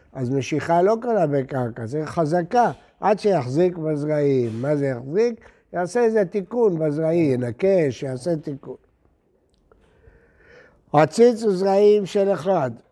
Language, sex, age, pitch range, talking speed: Hebrew, male, 60-79, 140-195 Hz, 115 wpm